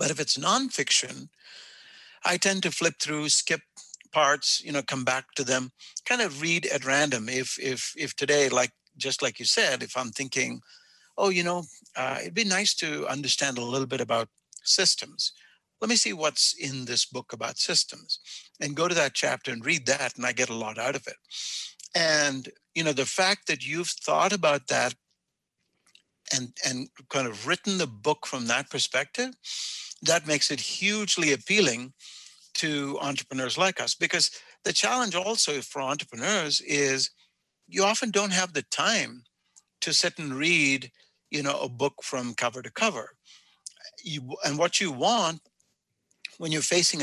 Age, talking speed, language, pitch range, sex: 60-79, 170 wpm, English, 135-185 Hz, male